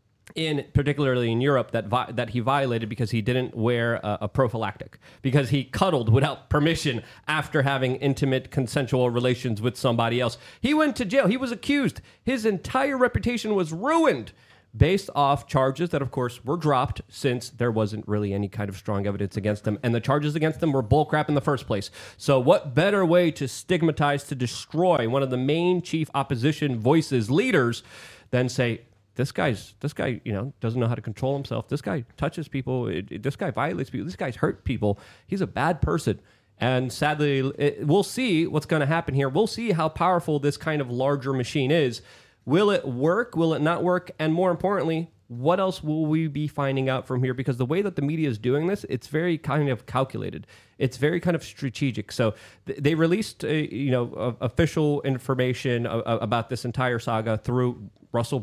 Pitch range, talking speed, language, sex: 120-155 Hz, 195 wpm, English, male